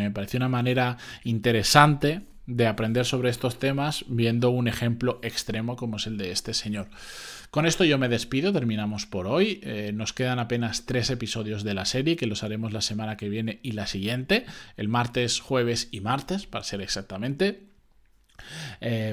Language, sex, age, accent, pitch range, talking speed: Spanish, male, 20-39, Spanish, 110-140 Hz, 175 wpm